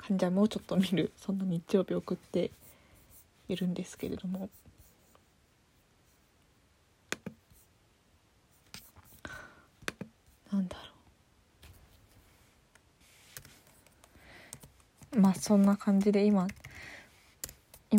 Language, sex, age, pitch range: Japanese, female, 20-39, 185-220 Hz